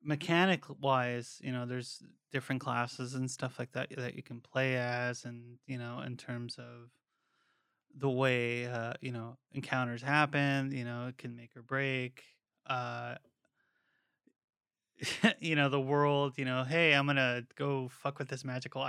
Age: 20-39